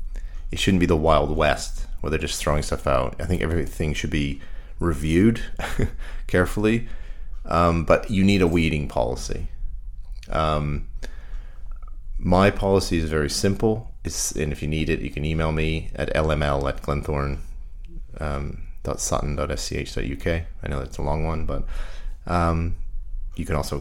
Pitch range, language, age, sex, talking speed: 75-85 Hz, English, 30-49, male, 155 wpm